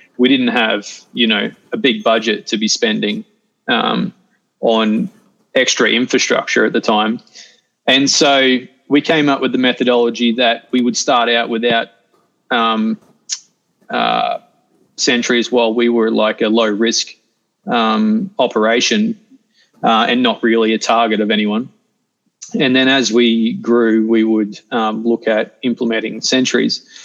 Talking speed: 140 wpm